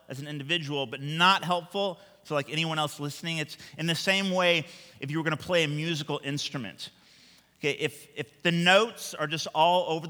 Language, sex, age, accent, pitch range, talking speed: English, male, 30-49, American, 115-165 Hz, 210 wpm